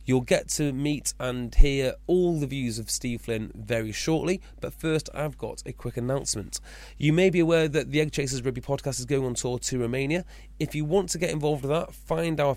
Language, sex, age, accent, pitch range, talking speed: English, male, 30-49, British, 120-155 Hz, 225 wpm